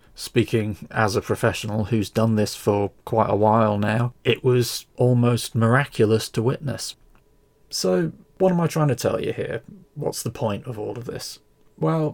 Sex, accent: male, British